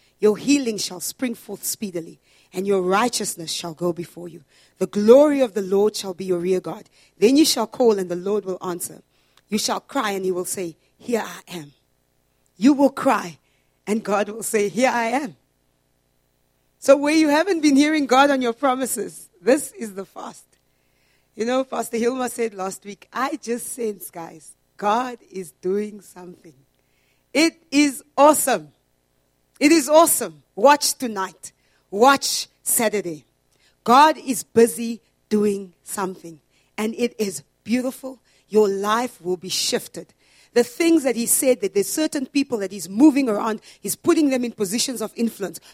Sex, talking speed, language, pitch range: female, 165 wpm, English, 180-250 Hz